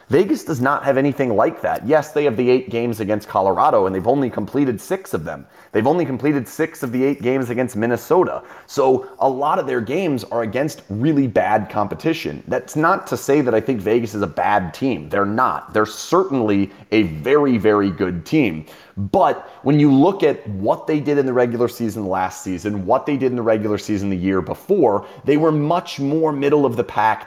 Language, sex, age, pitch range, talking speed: English, male, 30-49, 100-135 Hz, 205 wpm